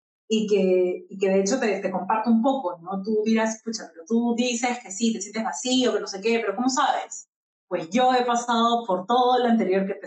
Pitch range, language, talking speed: 195-245 Hz, Spanish, 240 wpm